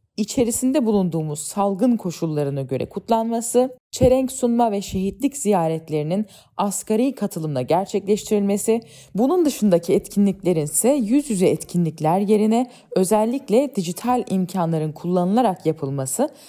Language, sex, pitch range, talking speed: Turkish, female, 170-245 Hz, 100 wpm